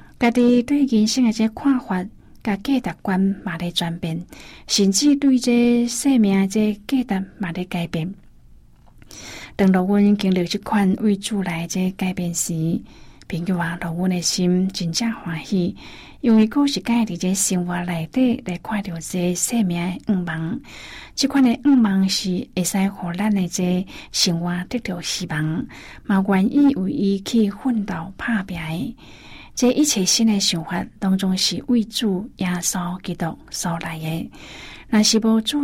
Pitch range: 175-220 Hz